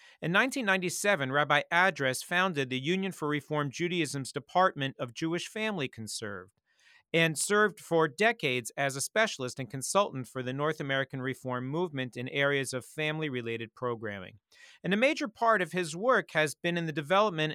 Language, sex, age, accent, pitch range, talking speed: English, male, 40-59, American, 135-185 Hz, 160 wpm